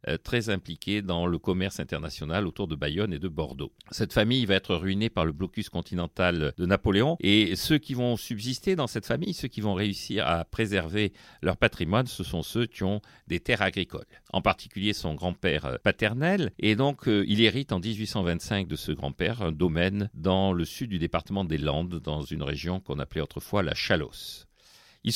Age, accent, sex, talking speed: 50-69, French, male, 190 wpm